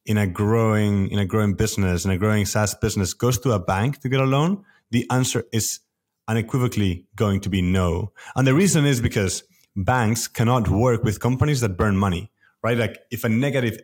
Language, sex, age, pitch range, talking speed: English, male, 30-49, 100-125 Hz, 200 wpm